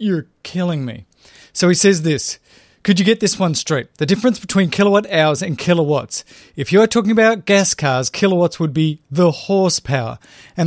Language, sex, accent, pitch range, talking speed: English, male, Australian, 150-195 Hz, 180 wpm